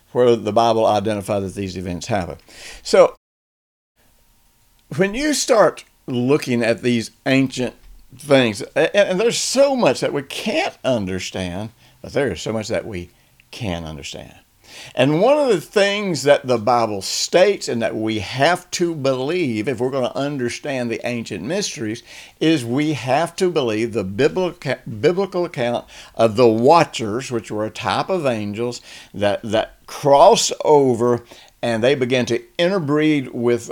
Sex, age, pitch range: male, 60-79, 110-145 Hz